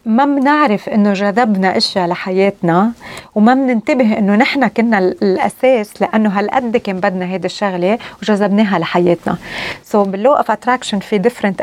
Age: 30-49